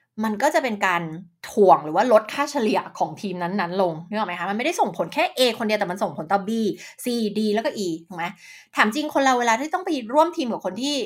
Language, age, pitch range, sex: Thai, 20-39, 195-300 Hz, female